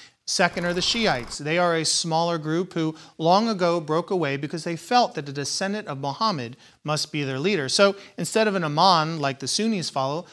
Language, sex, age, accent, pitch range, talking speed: English, male, 40-59, American, 140-185 Hz, 205 wpm